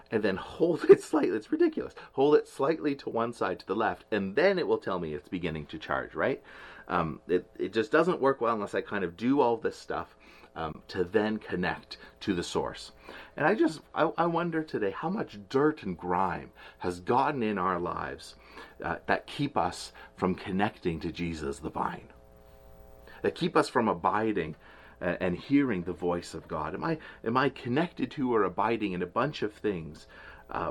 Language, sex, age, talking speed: English, male, 30-49, 195 wpm